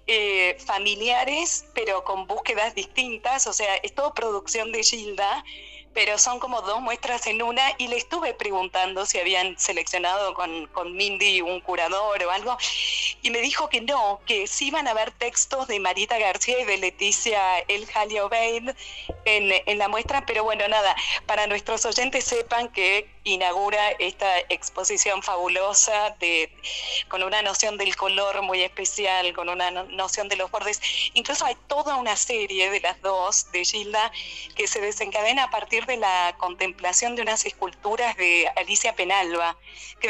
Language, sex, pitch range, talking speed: Spanish, female, 185-235 Hz, 160 wpm